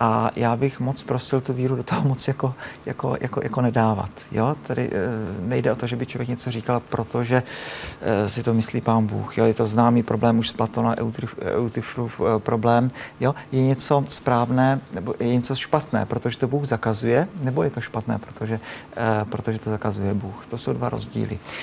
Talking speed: 175 wpm